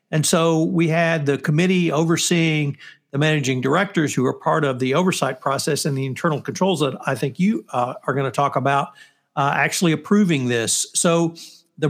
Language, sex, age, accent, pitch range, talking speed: English, male, 60-79, American, 140-175 Hz, 185 wpm